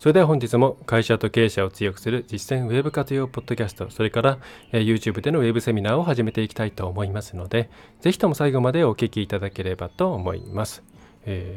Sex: male